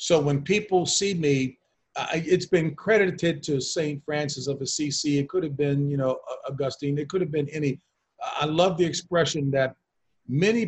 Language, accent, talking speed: English, American, 175 wpm